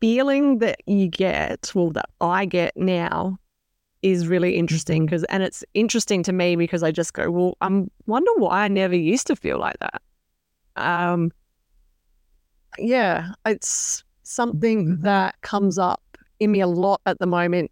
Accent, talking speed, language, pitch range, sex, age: Australian, 160 wpm, English, 175-205 Hz, female, 30-49